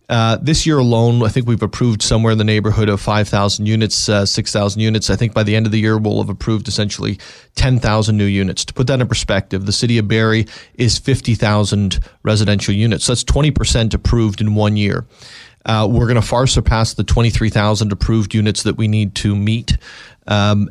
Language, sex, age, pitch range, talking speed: English, male, 40-59, 105-115 Hz, 200 wpm